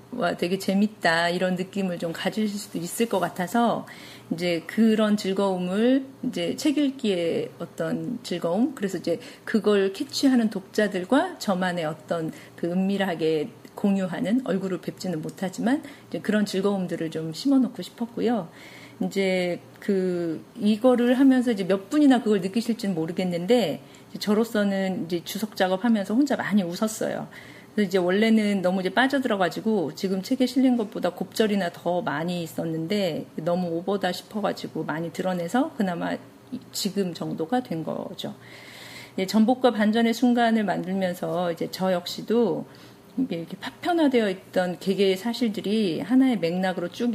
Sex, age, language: female, 40-59, Korean